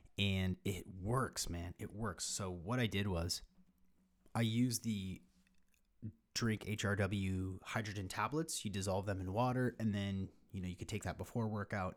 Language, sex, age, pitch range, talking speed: English, male, 30-49, 90-110 Hz, 165 wpm